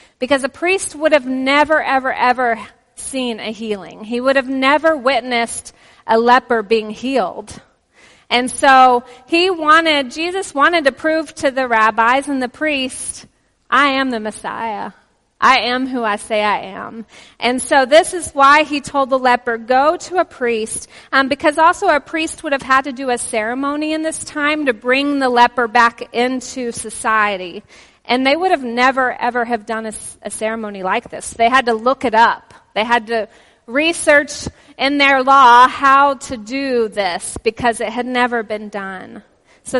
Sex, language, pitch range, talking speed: female, English, 235-280 Hz, 175 wpm